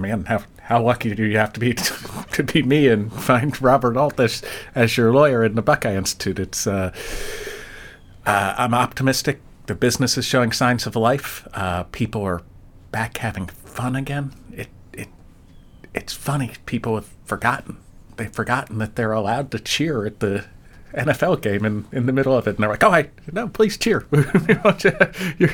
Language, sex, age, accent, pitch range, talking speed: English, male, 40-59, American, 90-120 Hz, 180 wpm